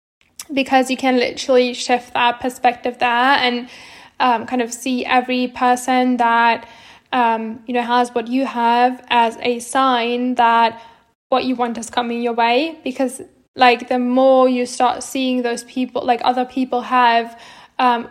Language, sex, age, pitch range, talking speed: English, female, 10-29, 240-260 Hz, 160 wpm